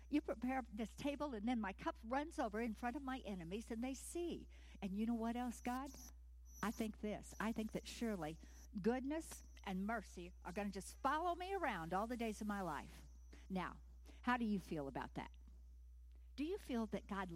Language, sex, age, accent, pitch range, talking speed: English, female, 60-79, American, 165-255 Hz, 205 wpm